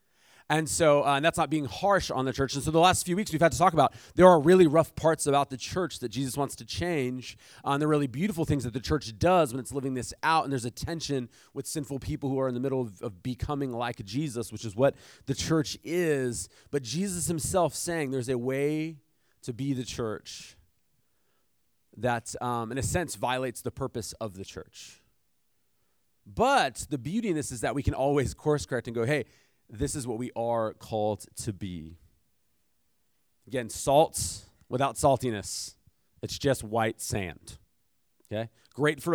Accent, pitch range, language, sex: American, 110-150 Hz, English, male